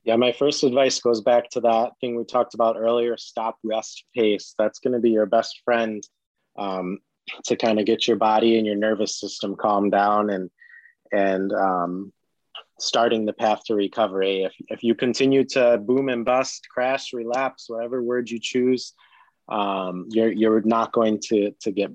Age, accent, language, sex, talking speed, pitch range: 30-49, American, English, male, 180 wpm, 105-120 Hz